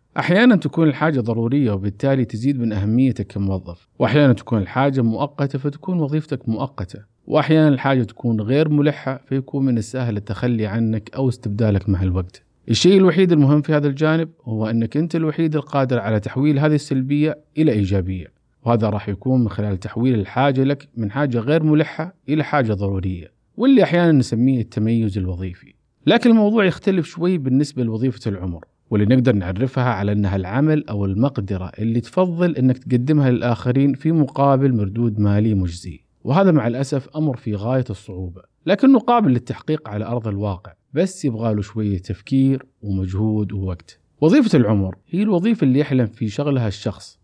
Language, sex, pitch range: Arabic, male, 105-145 Hz